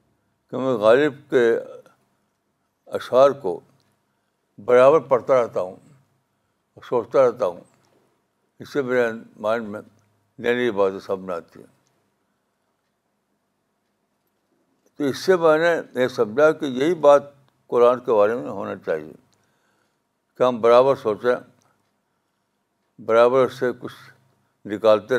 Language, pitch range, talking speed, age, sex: Urdu, 120-160 Hz, 105 wpm, 60-79, male